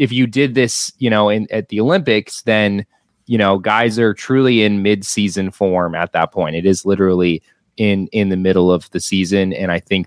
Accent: American